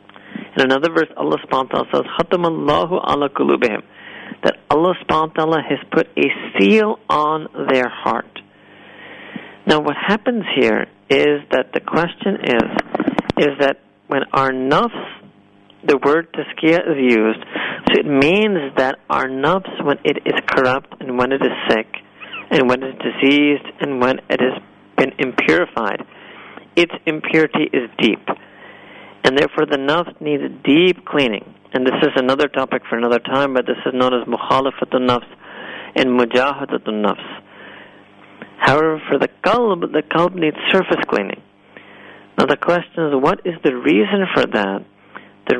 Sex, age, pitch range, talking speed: male, 50-69, 125-155 Hz, 145 wpm